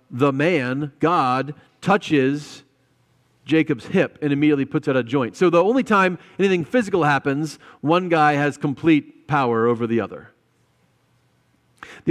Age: 40-59